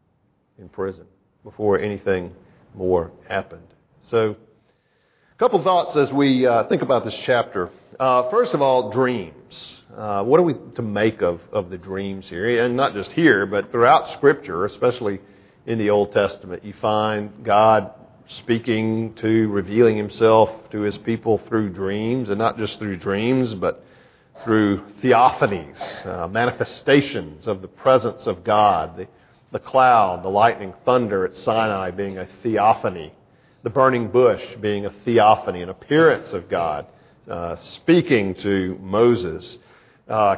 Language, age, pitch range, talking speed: English, 50-69, 100-120 Hz, 145 wpm